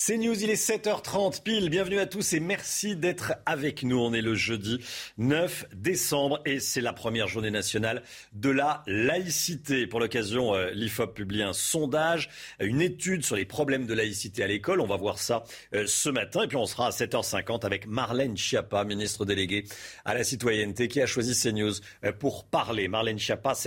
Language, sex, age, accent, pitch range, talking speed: French, male, 40-59, French, 105-145 Hz, 185 wpm